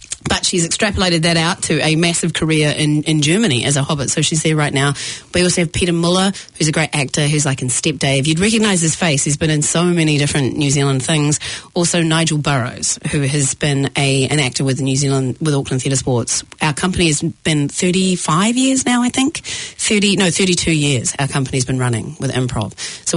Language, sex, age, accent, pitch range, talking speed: English, female, 30-49, Australian, 135-170 Hz, 215 wpm